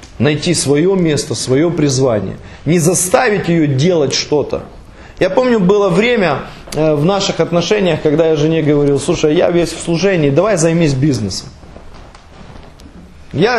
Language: Russian